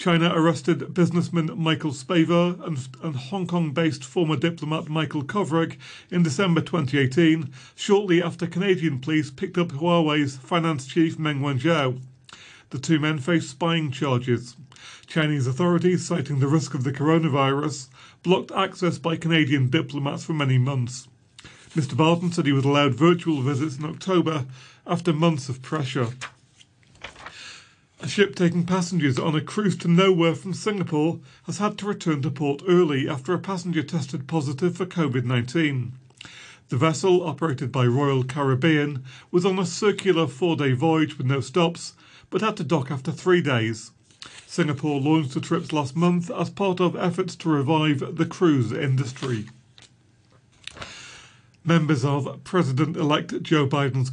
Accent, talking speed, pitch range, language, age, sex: British, 145 wpm, 135-170 Hz, English, 40-59, male